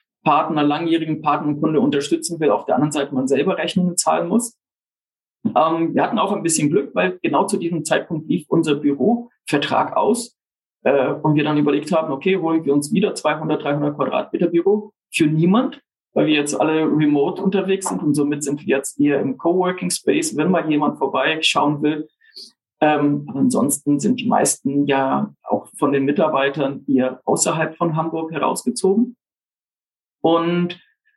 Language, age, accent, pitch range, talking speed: German, 50-69, German, 150-195 Hz, 165 wpm